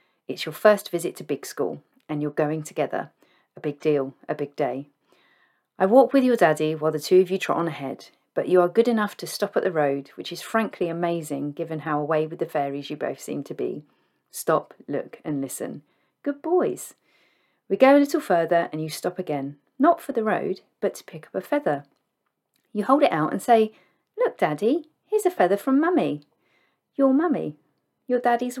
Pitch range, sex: 150-215 Hz, female